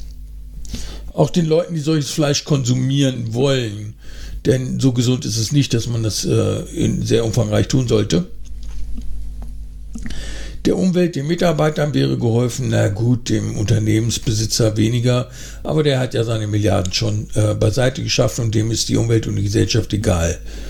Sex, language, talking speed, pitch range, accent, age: male, German, 150 wpm, 105-135 Hz, German, 60-79